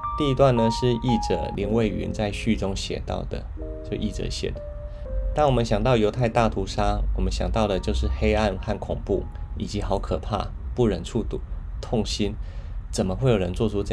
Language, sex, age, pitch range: Chinese, male, 20-39, 90-110 Hz